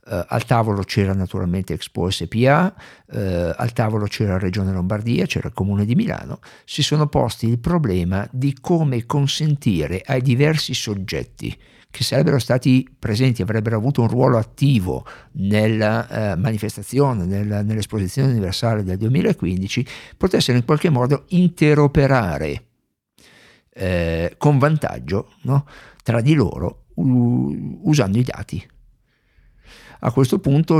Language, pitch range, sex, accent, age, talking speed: Italian, 100-140 Hz, male, native, 50-69, 125 wpm